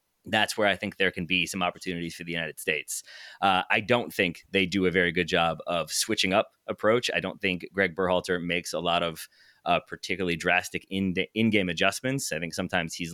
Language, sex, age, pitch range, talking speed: English, male, 30-49, 85-105 Hz, 210 wpm